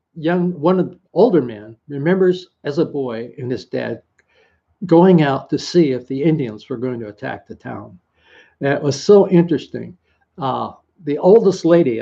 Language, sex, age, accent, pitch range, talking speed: English, male, 60-79, American, 125-175 Hz, 170 wpm